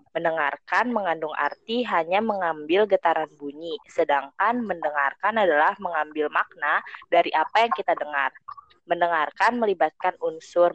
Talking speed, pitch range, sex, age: 110 wpm, 155-205 Hz, female, 20-39